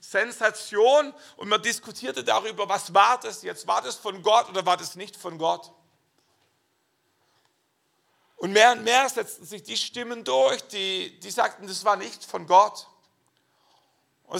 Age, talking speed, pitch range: 50-69, 155 wpm, 180-220 Hz